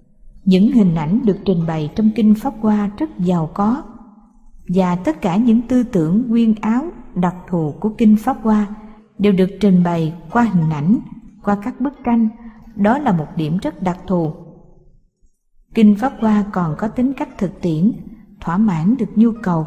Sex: female